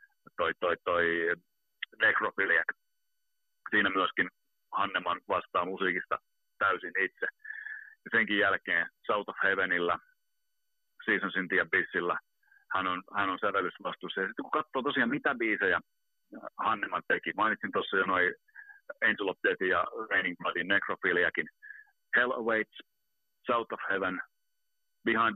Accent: native